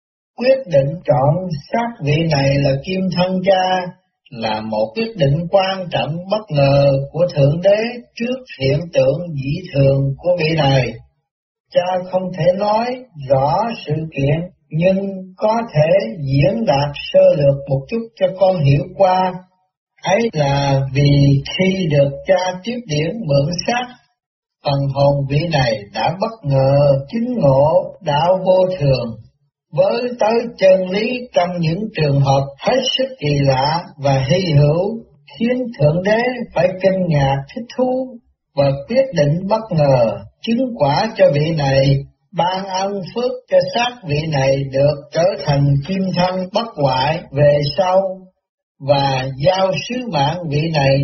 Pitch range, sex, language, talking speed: 140-195 Hz, male, Vietnamese, 150 wpm